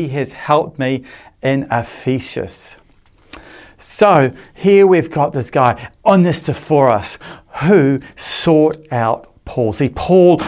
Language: English